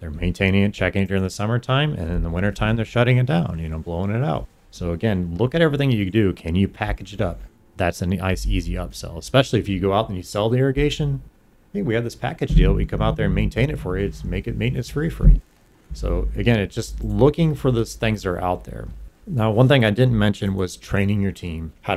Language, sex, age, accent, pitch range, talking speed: English, male, 30-49, American, 90-110 Hz, 255 wpm